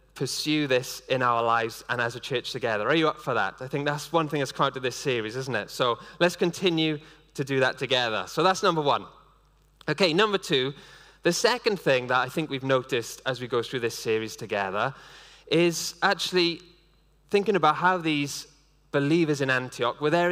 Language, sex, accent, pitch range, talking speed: English, male, British, 145-185 Hz, 200 wpm